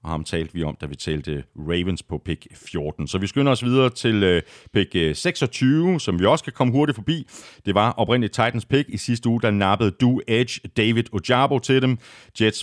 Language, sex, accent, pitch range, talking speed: Danish, male, native, 85-125 Hz, 205 wpm